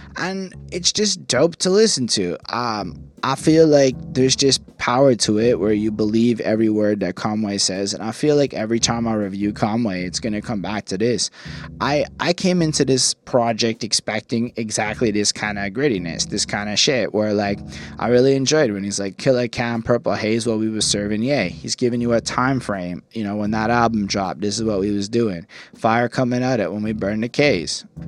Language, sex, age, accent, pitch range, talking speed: English, male, 20-39, American, 105-120 Hz, 215 wpm